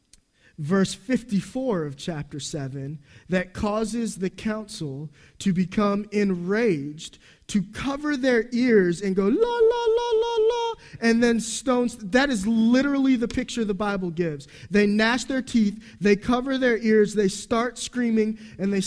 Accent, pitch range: American, 175-220 Hz